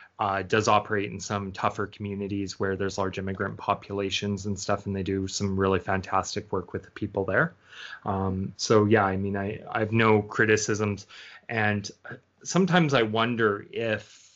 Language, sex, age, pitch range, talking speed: English, male, 30-49, 95-110 Hz, 165 wpm